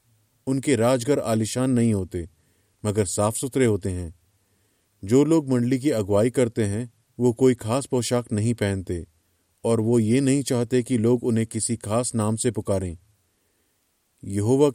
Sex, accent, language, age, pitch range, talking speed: male, native, Hindi, 30-49, 100-125 Hz, 150 wpm